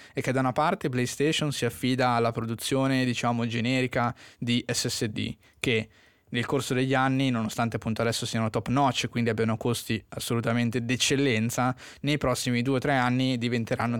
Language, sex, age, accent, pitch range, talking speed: Italian, male, 20-39, native, 115-130 Hz, 155 wpm